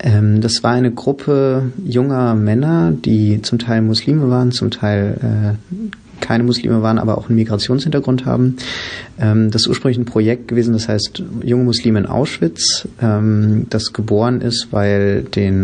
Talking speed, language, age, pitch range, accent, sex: 155 wpm, German, 30-49, 105-120 Hz, German, male